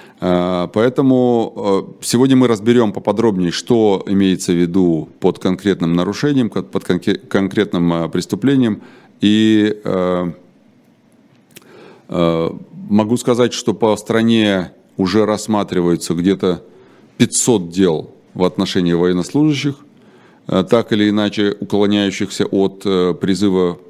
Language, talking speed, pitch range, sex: Russian, 90 wpm, 90-105 Hz, male